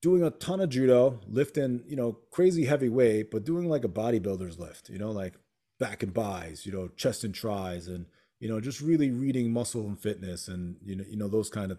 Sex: male